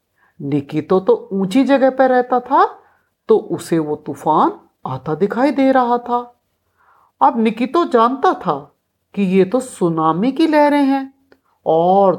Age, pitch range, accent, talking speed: 60-79, 175-280 Hz, native, 145 wpm